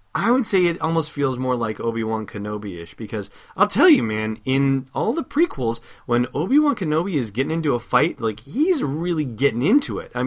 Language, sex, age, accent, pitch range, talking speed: English, male, 30-49, American, 105-140 Hz, 200 wpm